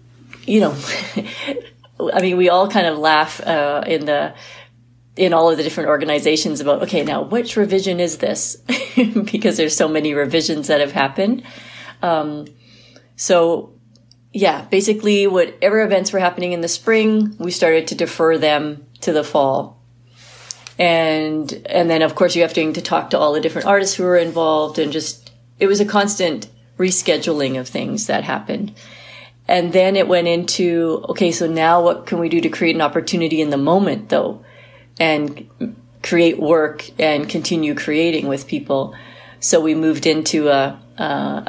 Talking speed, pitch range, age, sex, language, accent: 165 wpm, 140-180 Hz, 40-59, female, English, American